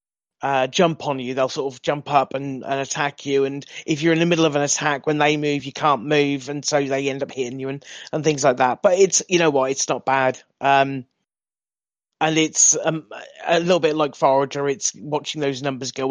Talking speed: 230 wpm